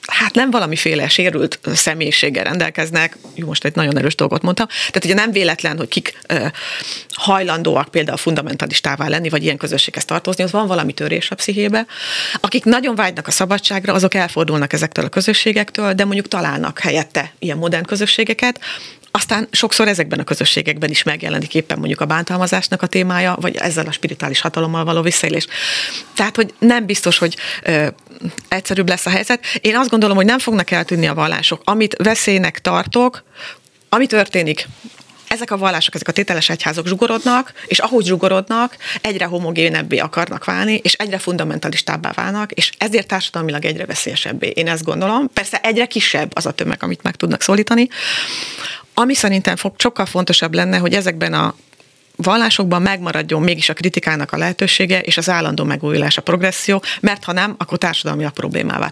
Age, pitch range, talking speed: 30-49, 165-215 Hz, 160 wpm